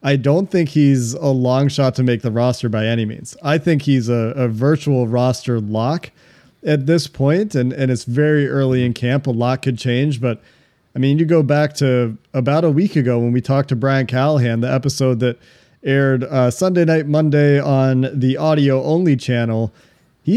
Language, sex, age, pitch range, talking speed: English, male, 40-59, 125-145 Hz, 195 wpm